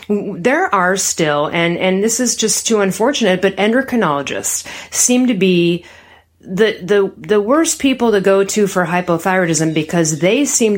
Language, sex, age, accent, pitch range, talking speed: English, female, 30-49, American, 170-240 Hz, 155 wpm